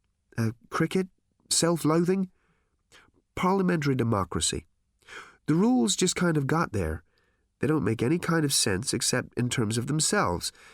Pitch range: 105-160 Hz